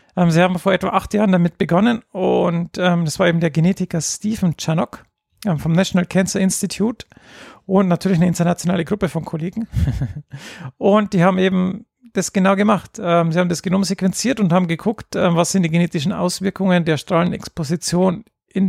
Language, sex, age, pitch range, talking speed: German, male, 40-59, 170-195 Hz, 165 wpm